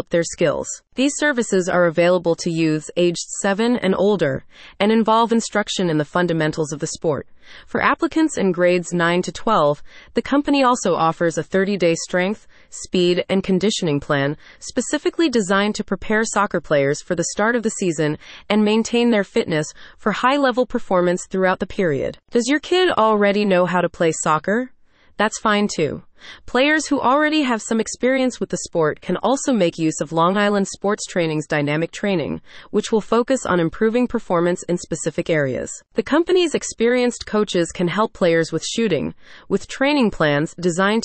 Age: 30-49